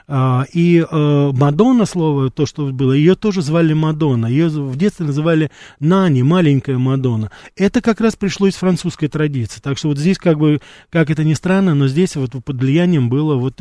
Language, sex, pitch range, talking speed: Russian, male, 125-165 Hz, 190 wpm